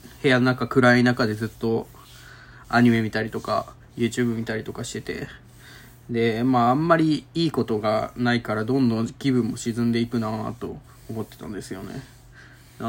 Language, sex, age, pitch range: Japanese, male, 20-39, 115-130 Hz